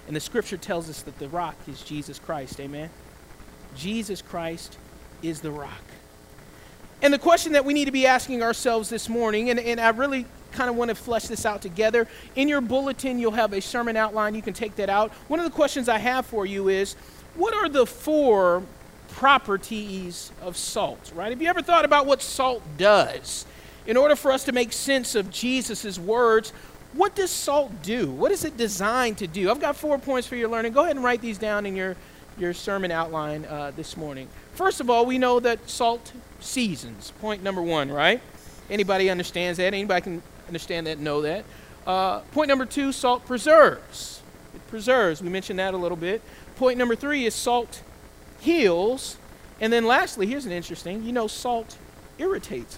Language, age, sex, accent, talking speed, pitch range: English, 40-59, male, American, 195 wpm, 175-255 Hz